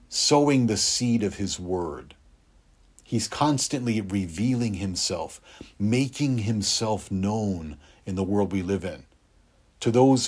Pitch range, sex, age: 90-115 Hz, male, 50-69